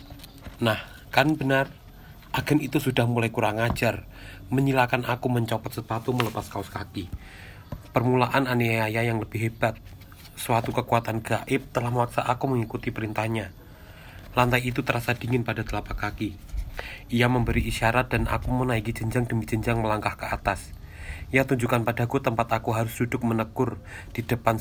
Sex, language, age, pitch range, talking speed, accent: male, Indonesian, 30-49, 110-125 Hz, 140 wpm, native